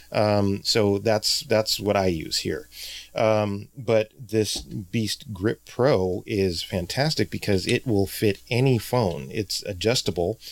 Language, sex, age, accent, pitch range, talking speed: English, male, 30-49, American, 95-110 Hz, 135 wpm